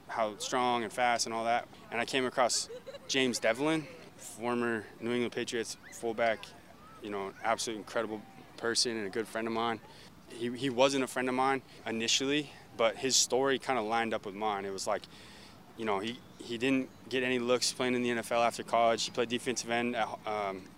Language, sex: English, male